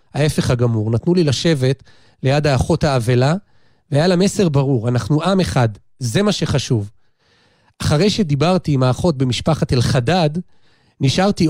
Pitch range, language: 130-175 Hz, Hebrew